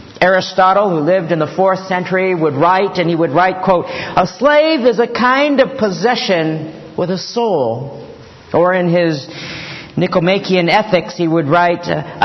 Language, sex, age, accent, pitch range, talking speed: English, male, 50-69, American, 170-225 Hz, 160 wpm